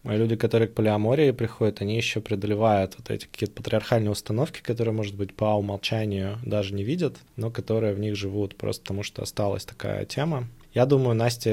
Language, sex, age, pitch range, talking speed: Russian, male, 20-39, 100-120 Hz, 180 wpm